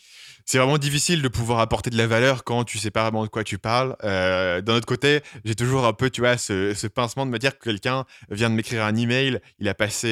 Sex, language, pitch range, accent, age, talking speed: male, French, 105-135 Hz, French, 20-39, 260 wpm